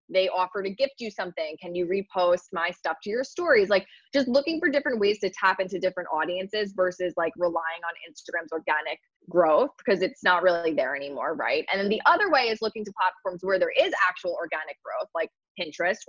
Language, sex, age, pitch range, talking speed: English, female, 20-39, 175-215 Hz, 210 wpm